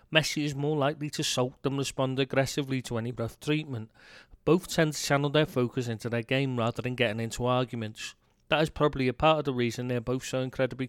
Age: 40-59